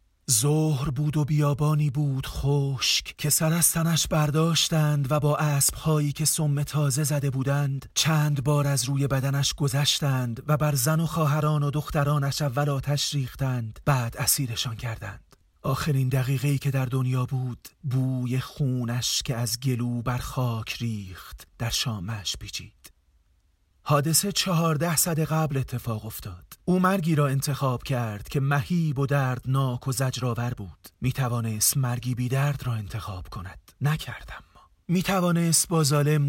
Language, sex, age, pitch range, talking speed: Persian, male, 30-49, 115-145 Hz, 140 wpm